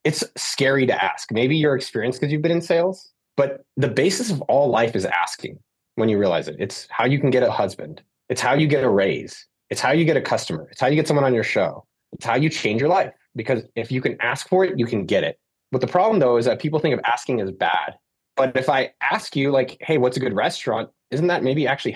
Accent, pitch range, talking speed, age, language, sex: American, 125-170 Hz, 260 wpm, 20-39, English, male